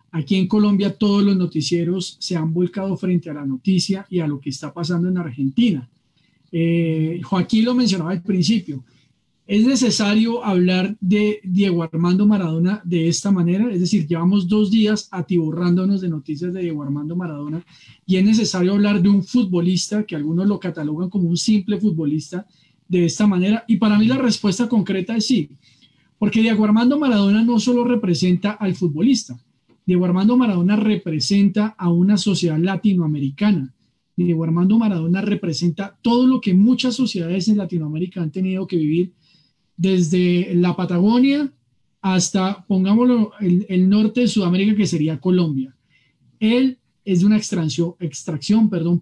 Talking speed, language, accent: 155 wpm, Spanish, Colombian